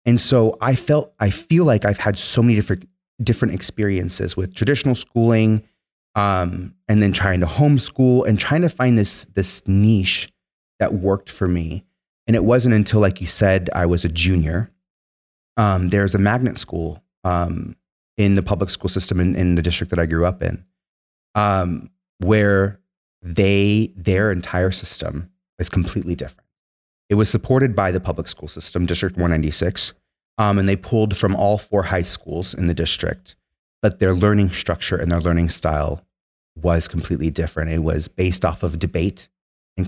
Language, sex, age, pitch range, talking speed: English, male, 30-49, 85-105 Hz, 170 wpm